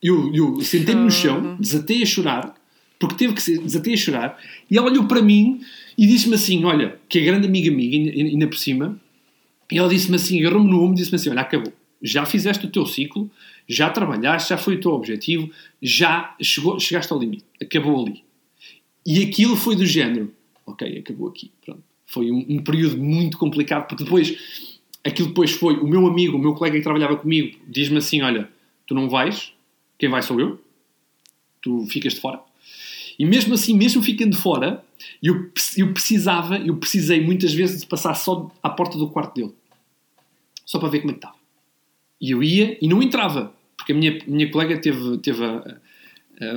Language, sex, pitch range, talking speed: Portuguese, male, 150-195 Hz, 195 wpm